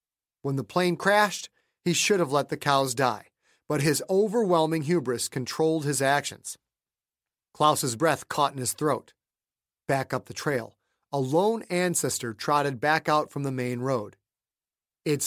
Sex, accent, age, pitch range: male, American, 40-59, 135-175 Hz